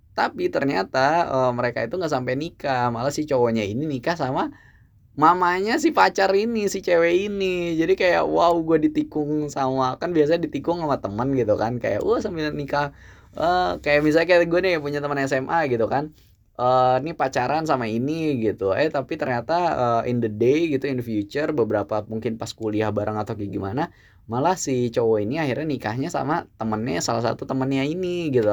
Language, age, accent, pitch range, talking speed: Indonesian, 10-29, native, 110-155 Hz, 185 wpm